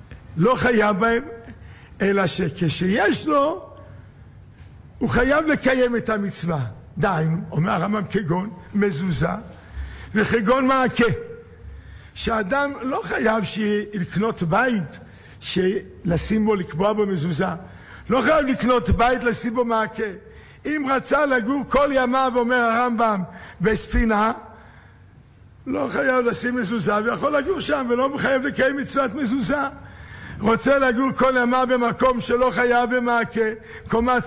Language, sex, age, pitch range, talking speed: Hebrew, male, 60-79, 185-255 Hz, 110 wpm